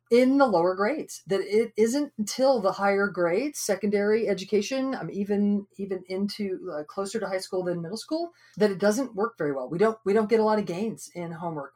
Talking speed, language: 215 wpm, English